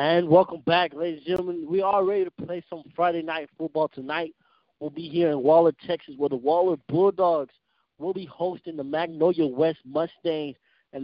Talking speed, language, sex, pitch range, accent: 185 wpm, English, male, 150-175 Hz, American